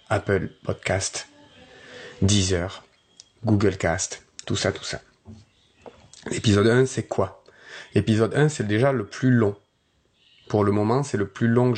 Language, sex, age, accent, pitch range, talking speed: French, male, 30-49, French, 105-135 Hz, 145 wpm